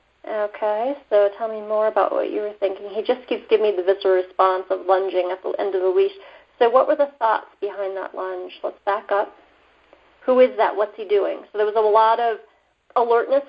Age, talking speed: 40-59, 225 wpm